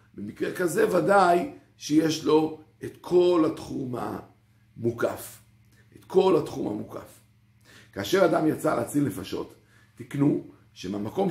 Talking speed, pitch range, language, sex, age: 105 wpm, 110-155 Hz, Hebrew, male, 50-69